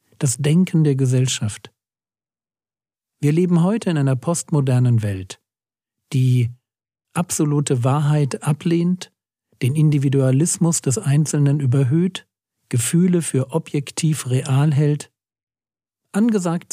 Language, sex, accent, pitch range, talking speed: German, male, German, 125-160 Hz, 95 wpm